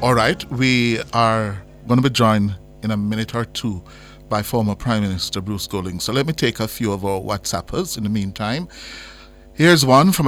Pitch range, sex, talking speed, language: 105-135 Hz, male, 200 wpm, English